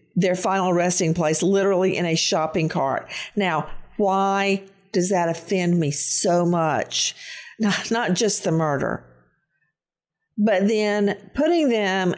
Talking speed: 130 wpm